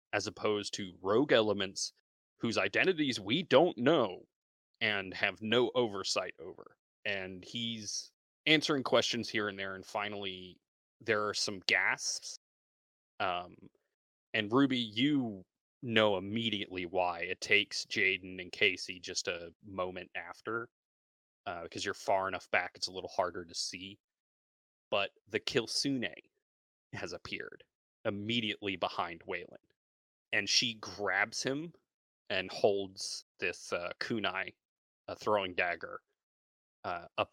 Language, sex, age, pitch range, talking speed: English, male, 30-49, 95-130 Hz, 125 wpm